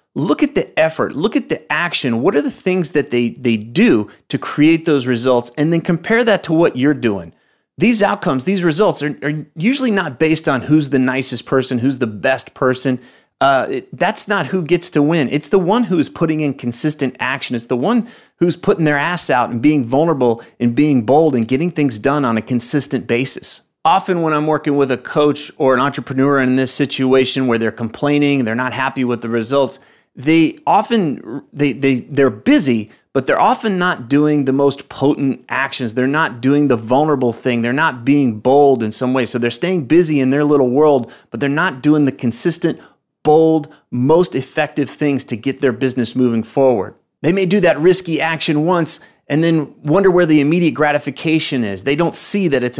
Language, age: English, 30-49